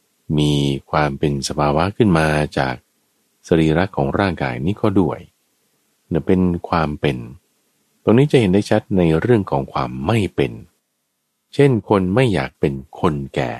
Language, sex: Thai, male